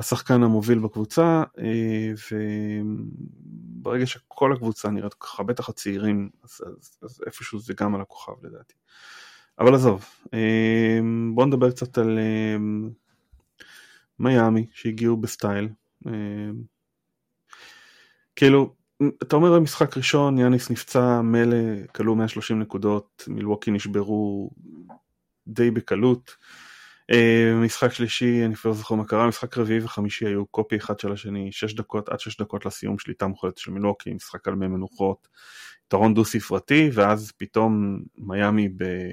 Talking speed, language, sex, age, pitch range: 120 wpm, Hebrew, male, 20-39, 105-120 Hz